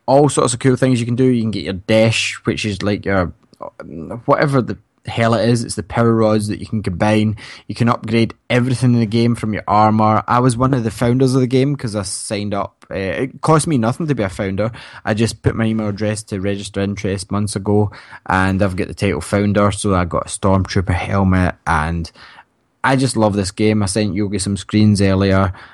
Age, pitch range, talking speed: 20-39, 100-120 Hz, 225 wpm